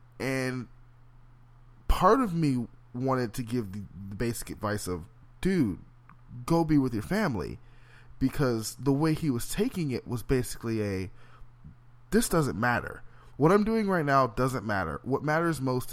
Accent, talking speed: American, 150 wpm